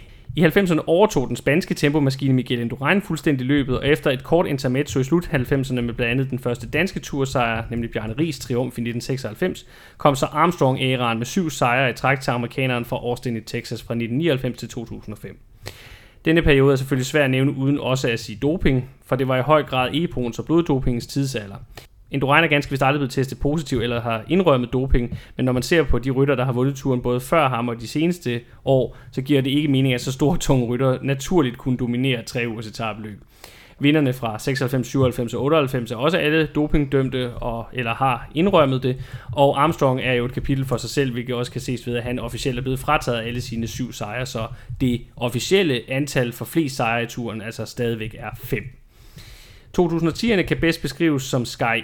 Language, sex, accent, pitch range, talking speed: Danish, male, native, 120-145 Hz, 205 wpm